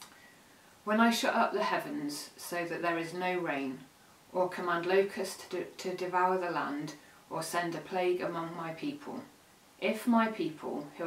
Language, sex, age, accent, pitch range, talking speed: English, female, 30-49, British, 175-205 Hz, 170 wpm